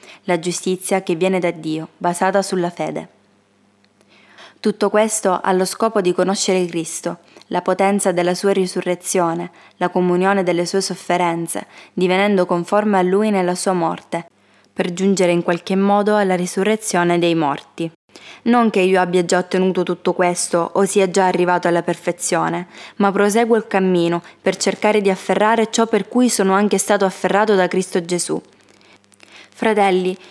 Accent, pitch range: native, 175-200 Hz